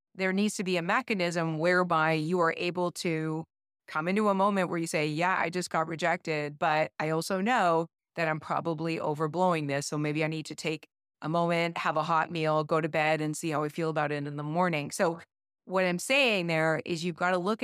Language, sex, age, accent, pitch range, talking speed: English, female, 30-49, American, 160-180 Hz, 230 wpm